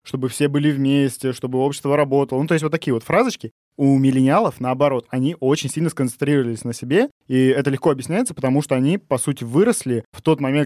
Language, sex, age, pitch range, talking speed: Russian, male, 20-39, 130-160 Hz, 205 wpm